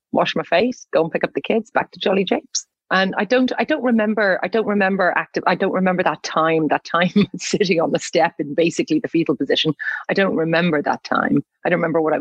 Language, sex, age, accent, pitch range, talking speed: English, female, 40-59, Irish, 150-190 Hz, 240 wpm